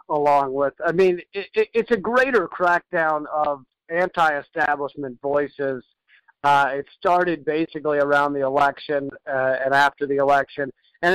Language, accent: English, American